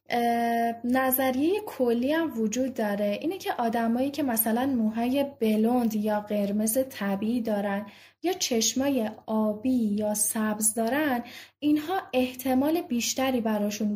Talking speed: 110 wpm